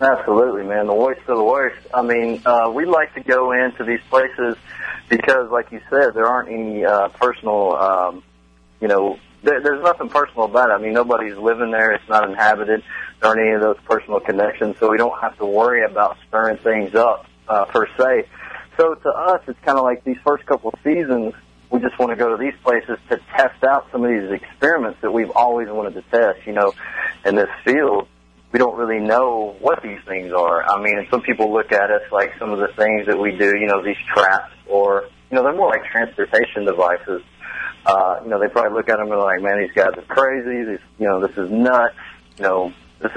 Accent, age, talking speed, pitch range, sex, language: American, 30-49, 225 wpm, 100-125 Hz, male, English